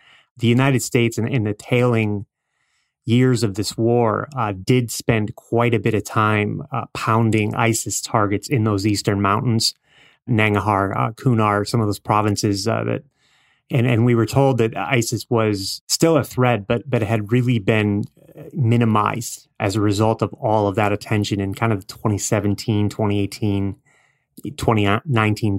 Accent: American